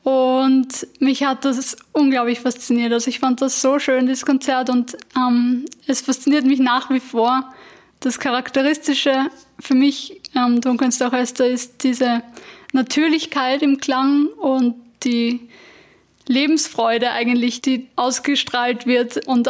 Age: 20-39